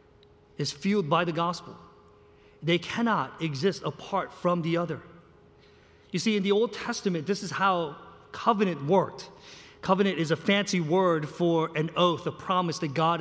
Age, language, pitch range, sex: 40-59, English, 145-195 Hz, male